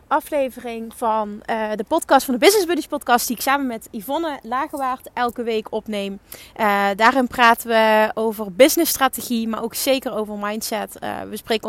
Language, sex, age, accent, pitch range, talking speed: Dutch, female, 20-39, Dutch, 215-265 Hz, 170 wpm